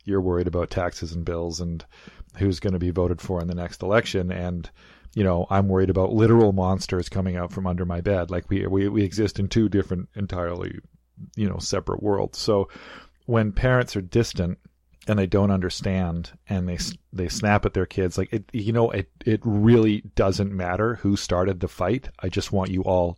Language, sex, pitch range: English, male, 90-105 Hz